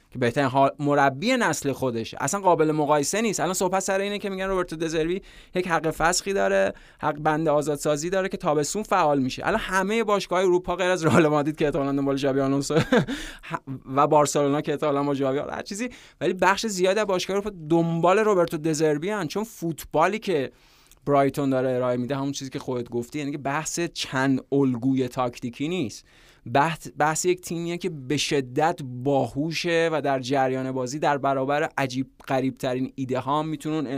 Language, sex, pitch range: Persian, male, 135-165 Hz